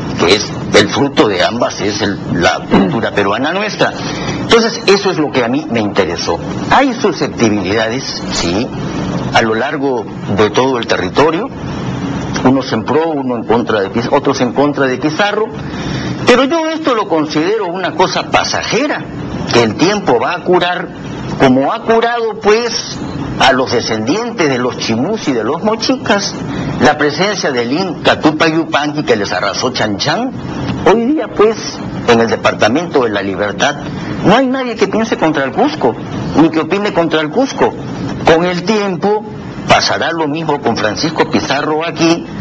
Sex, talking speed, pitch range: male, 155 wpm, 140-205 Hz